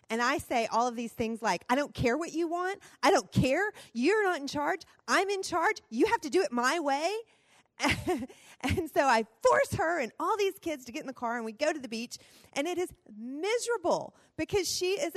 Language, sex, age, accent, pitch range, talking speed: English, female, 30-49, American, 210-330 Hz, 230 wpm